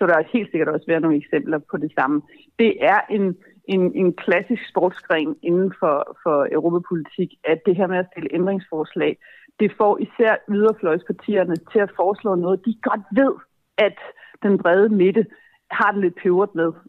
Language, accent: Danish, native